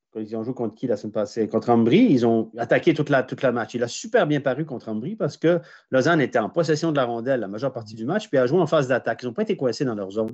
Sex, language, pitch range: male, French, 120-170 Hz